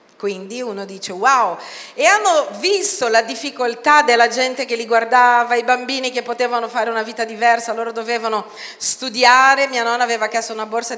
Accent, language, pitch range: native, Italian, 205-280 Hz